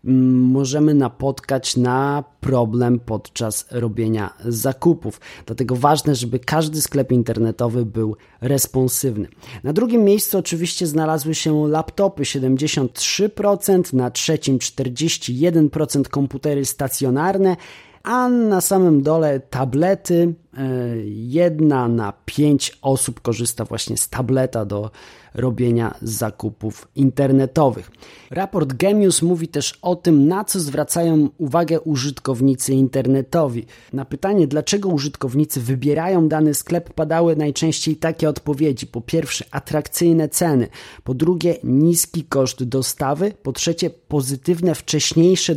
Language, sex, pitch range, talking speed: Polish, male, 125-160 Hz, 105 wpm